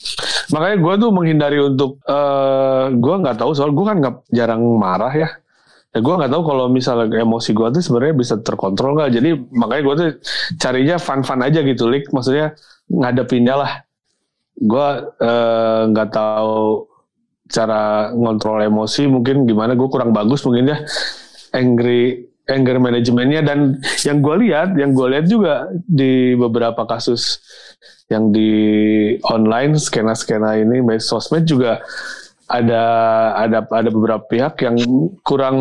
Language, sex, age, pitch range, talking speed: Indonesian, male, 20-39, 115-140 Hz, 140 wpm